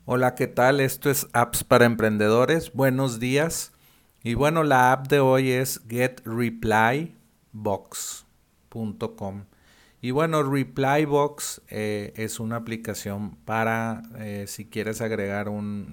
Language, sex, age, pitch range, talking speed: Spanish, male, 40-59, 100-120 Hz, 115 wpm